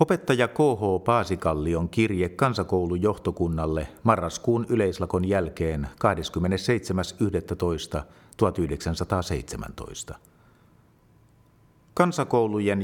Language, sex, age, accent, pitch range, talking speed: Finnish, male, 50-69, native, 90-120 Hz, 45 wpm